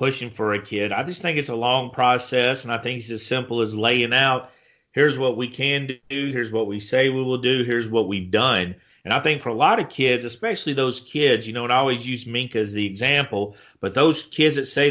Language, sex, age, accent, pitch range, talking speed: English, male, 40-59, American, 115-135 Hz, 250 wpm